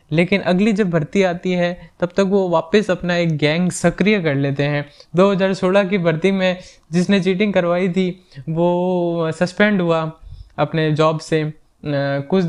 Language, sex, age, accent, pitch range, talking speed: Hindi, male, 20-39, native, 155-200 Hz, 155 wpm